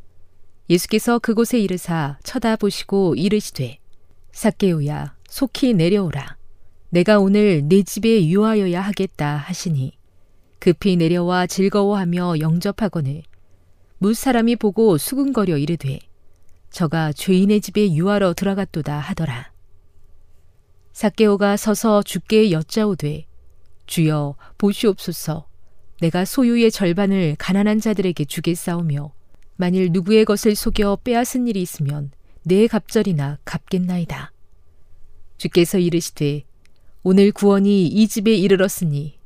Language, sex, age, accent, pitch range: Korean, female, 40-59, native, 140-205 Hz